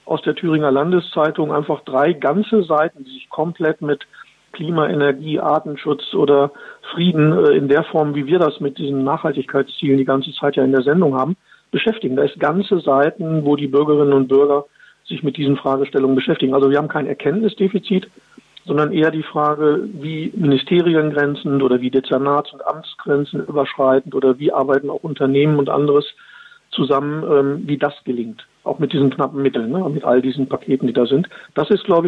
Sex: male